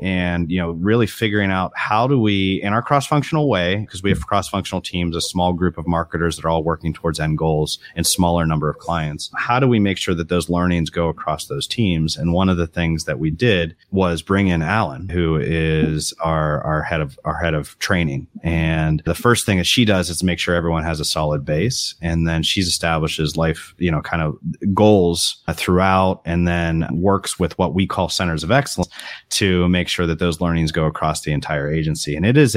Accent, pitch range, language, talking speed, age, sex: American, 80-100 Hz, English, 220 wpm, 30-49, male